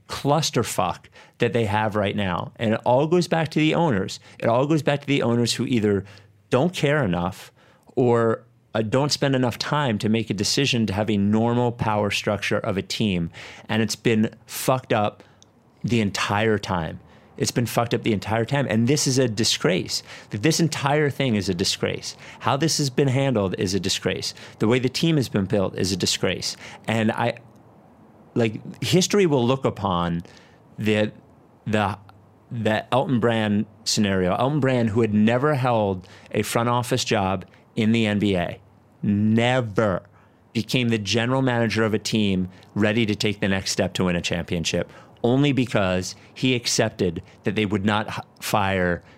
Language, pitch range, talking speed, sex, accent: English, 105-130 Hz, 175 wpm, male, American